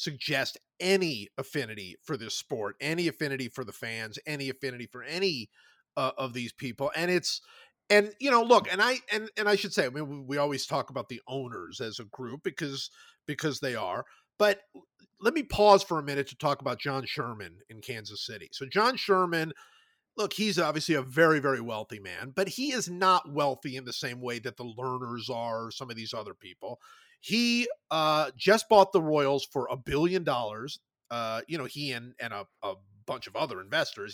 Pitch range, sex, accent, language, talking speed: 125-185 Hz, male, American, English, 200 wpm